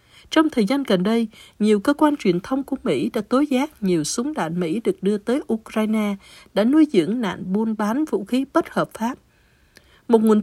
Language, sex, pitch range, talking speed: Vietnamese, female, 195-260 Hz, 205 wpm